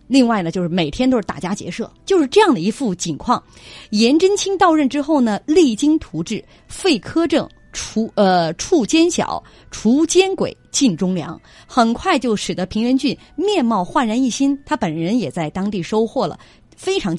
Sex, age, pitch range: female, 30-49, 180-285 Hz